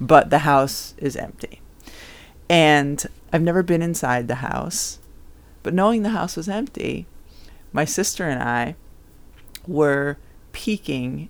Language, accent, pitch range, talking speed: English, American, 130-175 Hz, 125 wpm